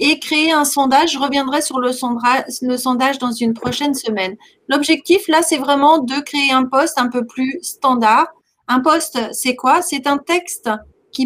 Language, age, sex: French, 40-59, female